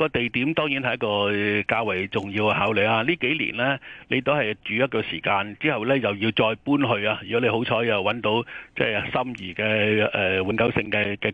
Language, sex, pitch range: Chinese, male, 110-155 Hz